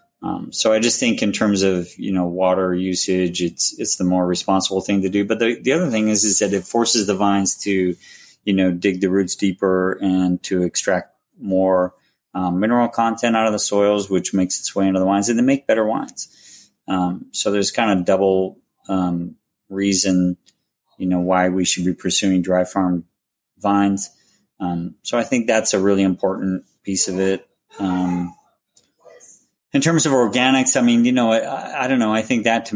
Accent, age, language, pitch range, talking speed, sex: American, 30-49, English, 90-105 Hz, 200 wpm, male